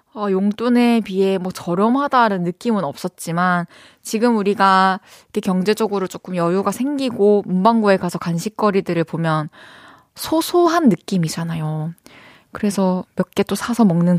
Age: 20-39